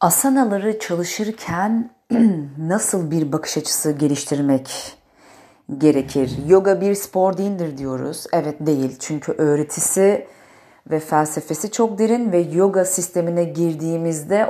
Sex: female